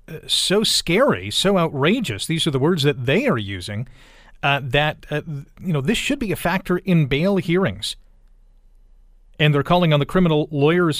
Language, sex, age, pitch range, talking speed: English, male, 40-59, 125-175 Hz, 180 wpm